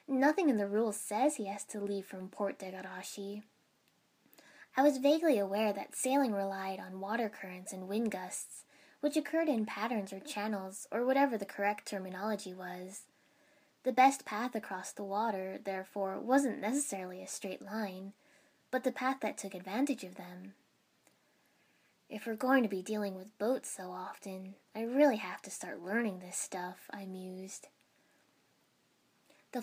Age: 10-29